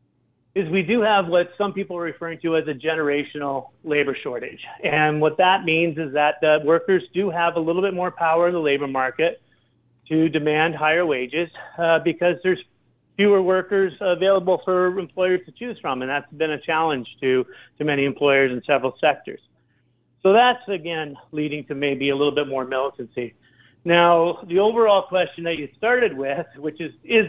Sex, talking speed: male, 185 wpm